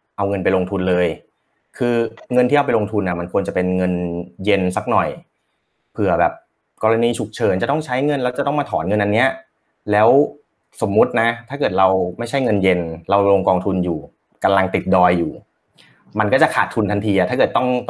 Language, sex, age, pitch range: Thai, male, 30-49, 90-115 Hz